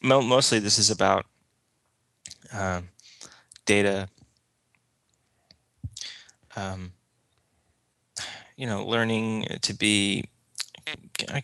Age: 20-39